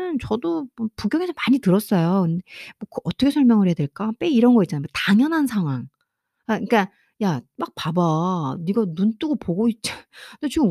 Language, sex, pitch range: Korean, female, 185-310 Hz